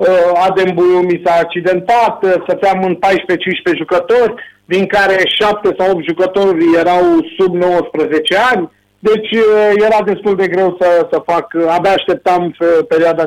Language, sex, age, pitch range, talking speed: Romanian, male, 50-69, 170-205 Hz, 130 wpm